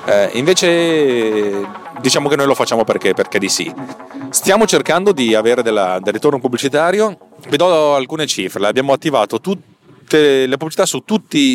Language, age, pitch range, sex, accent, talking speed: Italian, 30-49, 110-145 Hz, male, native, 155 wpm